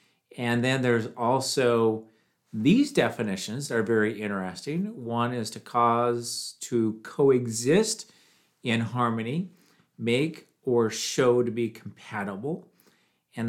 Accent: American